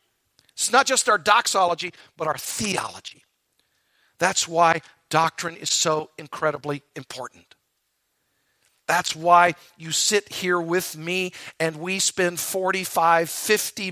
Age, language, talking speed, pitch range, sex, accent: 50-69, English, 115 wpm, 155-215 Hz, male, American